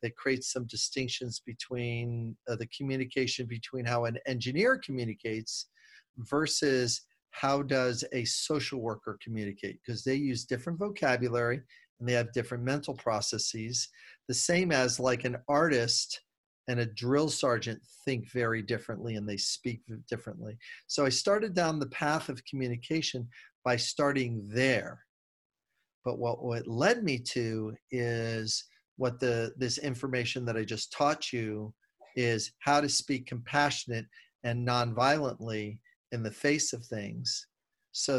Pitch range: 115-130 Hz